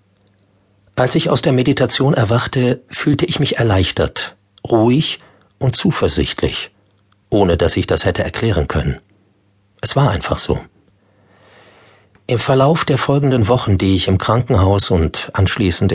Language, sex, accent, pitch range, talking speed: German, male, German, 95-115 Hz, 130 wpm